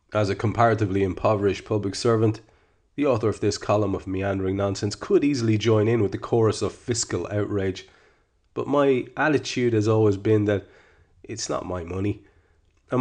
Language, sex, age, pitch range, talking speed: English, male, 30-49, 90-110 Hz, 165 wpm